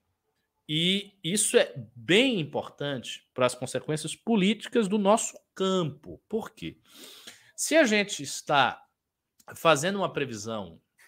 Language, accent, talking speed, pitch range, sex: Portuguese, Brazilian, 115 wpm, 160-245 Hz, male